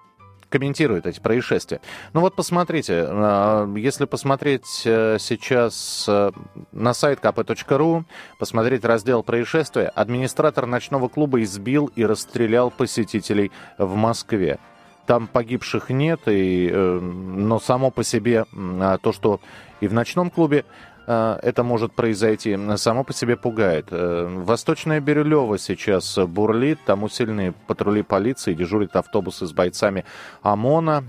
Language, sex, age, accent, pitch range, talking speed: Russian, male, 30-49, native, 105-130 Hz, 110 wpm